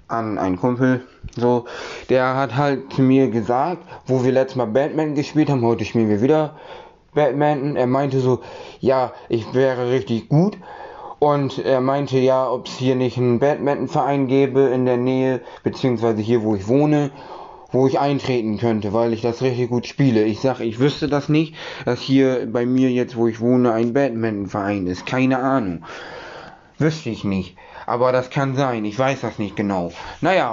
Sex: male